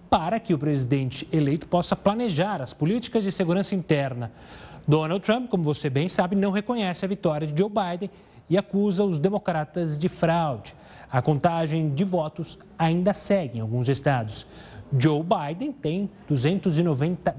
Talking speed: 150 wpm